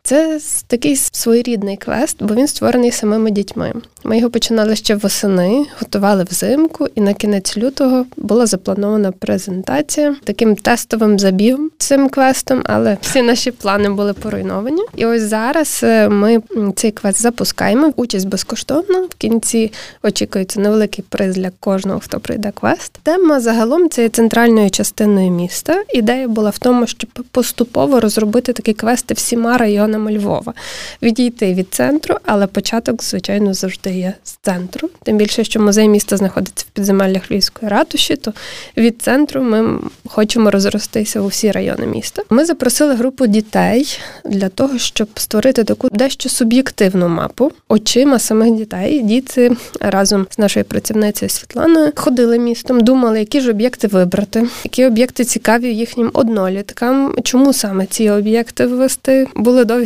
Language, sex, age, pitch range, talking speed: Ukrainian, female, 20-39, 205-255 Hz, 140 wpm